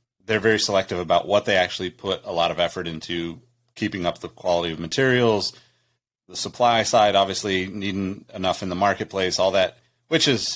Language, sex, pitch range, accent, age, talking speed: English, male, 90-110 Hz, American, 30-49, 180 wpm